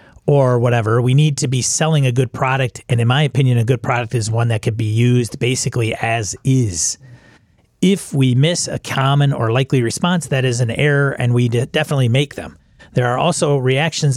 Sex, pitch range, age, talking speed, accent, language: male, 115-140 Hz, 40-59, 200 wpm, American, English